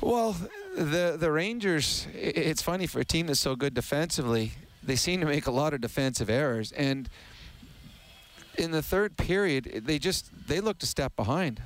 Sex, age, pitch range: male, 40-59, 130-160 Hz